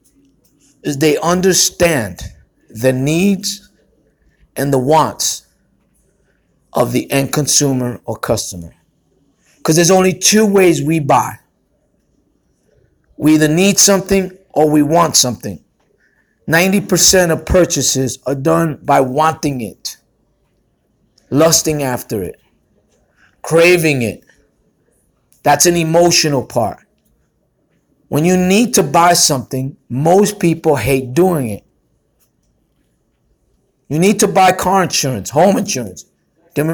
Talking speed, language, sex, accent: 110 wpm, English, male, American